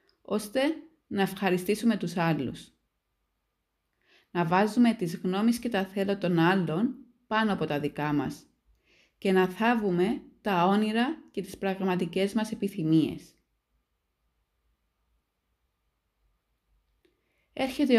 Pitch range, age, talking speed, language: 170-230 Hz, 20-39, 100 wpm, Greek